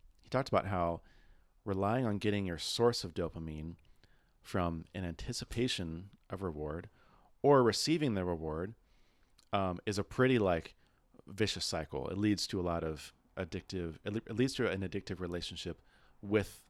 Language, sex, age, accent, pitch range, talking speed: English, male, 30-49, American, 85-105 Hz, 145 wpm